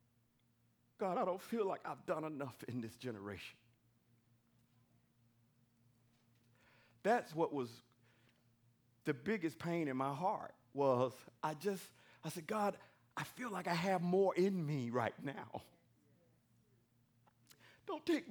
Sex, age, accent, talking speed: male, 50-69, American, 125 wpm